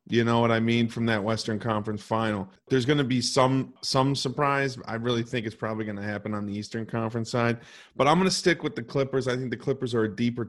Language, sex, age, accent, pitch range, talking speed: English, male, 30-49, American, 110-130 Hz, 255 wpm